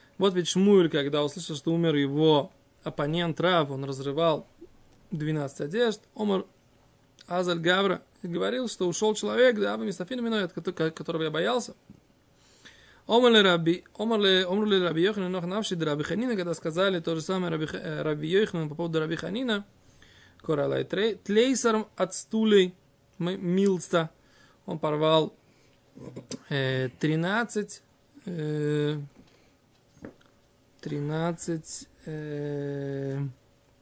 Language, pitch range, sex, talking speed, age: Russian, 155-200 Hz, male, 95 wpm, 20-39